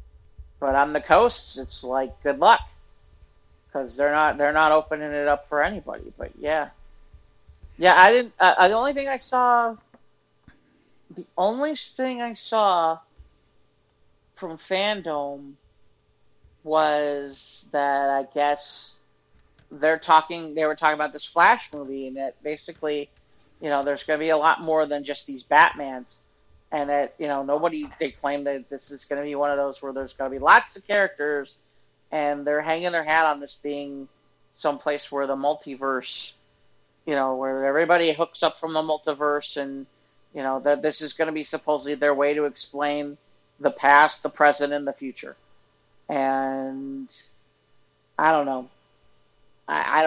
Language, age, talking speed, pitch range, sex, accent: English, 40-59, 160 wpm, 135-155 Hz, male, American